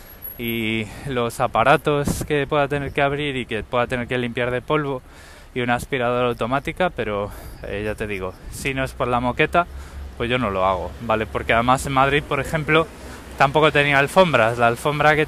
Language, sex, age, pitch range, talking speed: Spanish, male, 20-39, 120-160 Hz, 195 wpm